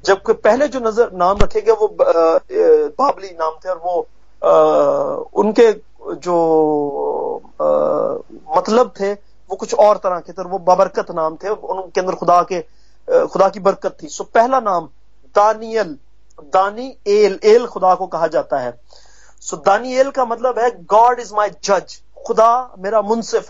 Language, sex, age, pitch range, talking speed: English, male, 30-49, 185-245 Hz, 155 wpm